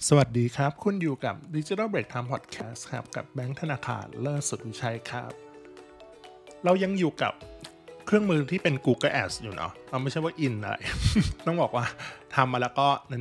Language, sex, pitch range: Thai, male, 115-140 Hz